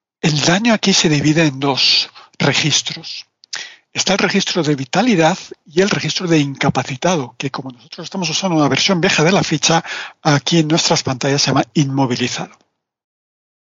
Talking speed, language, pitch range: 155 wpm, Spanish, 145-185 Hz